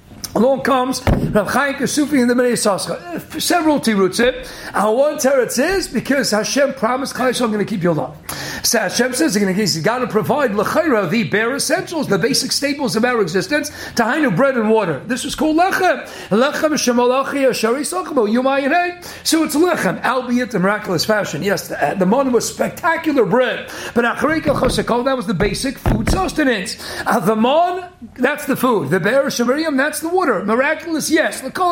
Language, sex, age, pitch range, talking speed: English, male, 50-69, 220-285 Hz, 170 wpm